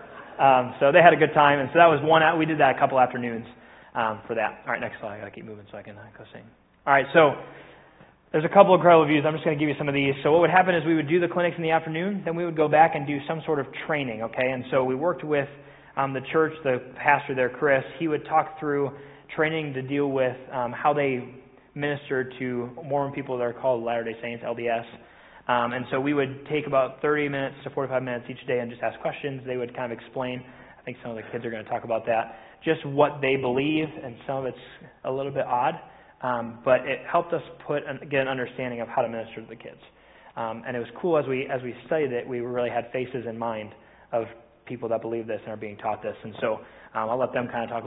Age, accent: 20-39, American